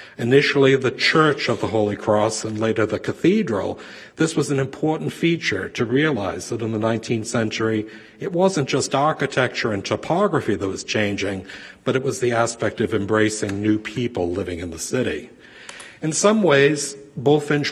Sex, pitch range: male, 110-140 Hz